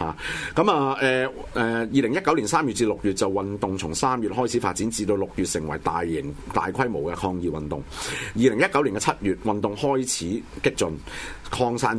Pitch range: 80-115 Hz